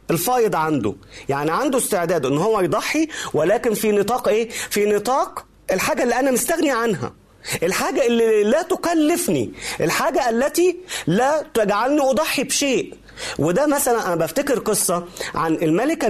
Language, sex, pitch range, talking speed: Arabic, male, 160-265 Hz, 135 wpm